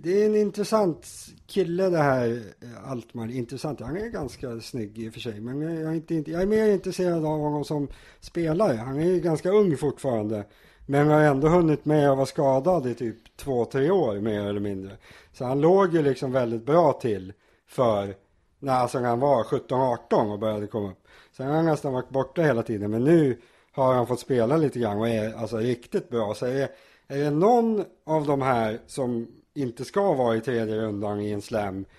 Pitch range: 115-155 Hz